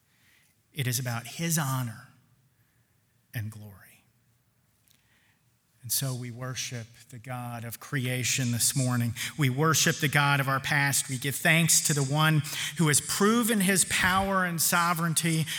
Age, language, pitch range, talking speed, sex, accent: 40-59, English, 125-160 Hz, 140 wpm, male, American